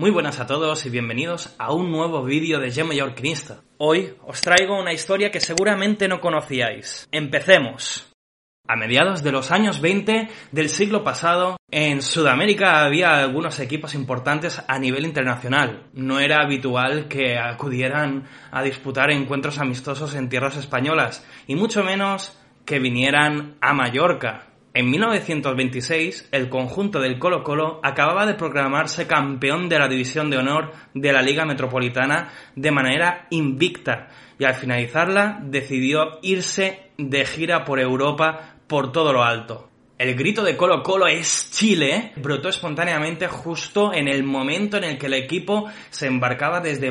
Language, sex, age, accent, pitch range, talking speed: Spanish, male, 20-39, Spanish, 135-170 Hz, 145 wpm